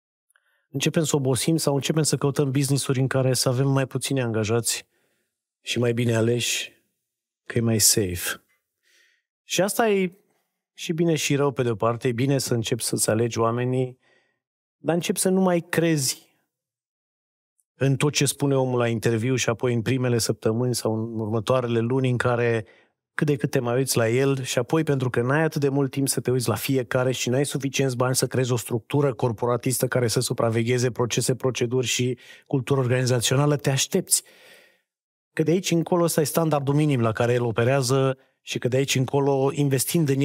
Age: 30-49